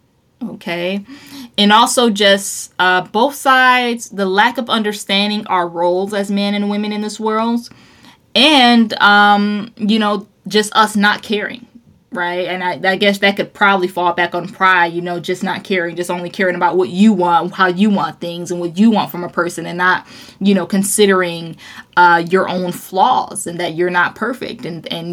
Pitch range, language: 180-215 Hz, English